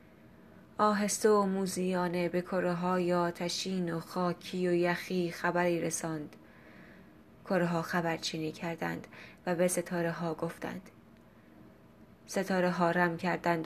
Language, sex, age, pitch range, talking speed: Persian, female, 20-39, 165-180 Hz, 115 wpm